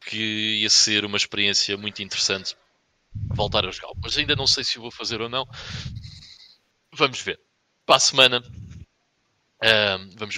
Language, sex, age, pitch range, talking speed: Portuguese, male, 20-39, 100-125 Hz, 155 wpm